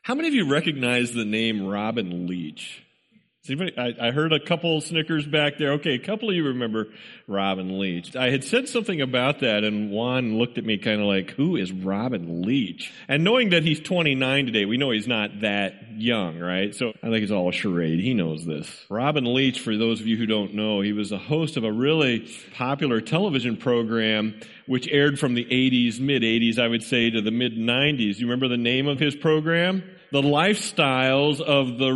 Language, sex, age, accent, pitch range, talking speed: English, male, 40-59, American, 120-180 Hz, 210 wpm